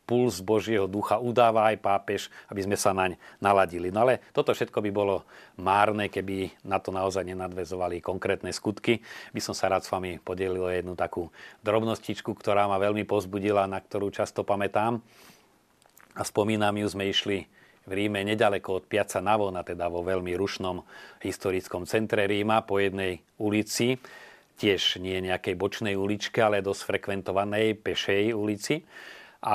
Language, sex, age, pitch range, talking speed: Slovak, male, 40-59, 100-120 Hz, 155 wpm